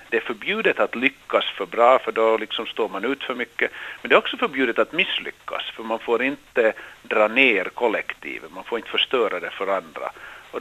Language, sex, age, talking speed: Swedish, male, 50-69, 210 wpm